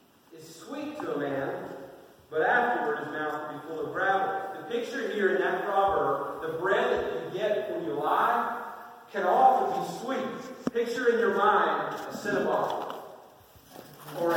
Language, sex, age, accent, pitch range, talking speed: English, male, 40-59, American, 160-235 Hz, 160 wpm